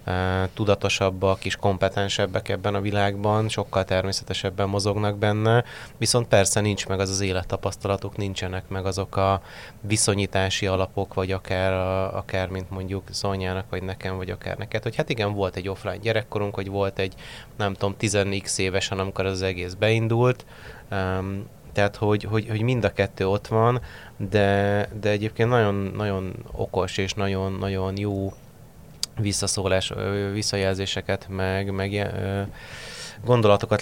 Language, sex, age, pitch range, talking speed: Hungarian, male, 30-49, 95-105 Hz, 135 wpm